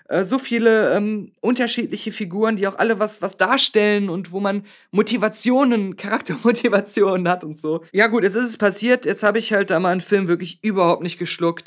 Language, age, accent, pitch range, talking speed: German, 20-39, German, 165-215 Hz, 190 wpm